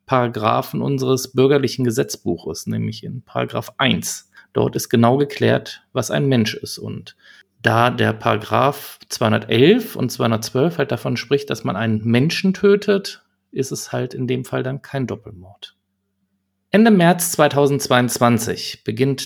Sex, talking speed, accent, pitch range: male, 135 wpm, German, 110-155 Hz